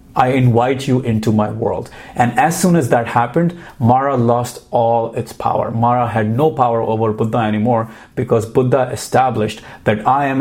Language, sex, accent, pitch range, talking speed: English, male, Indian, 110-130 Hz, 175 wpm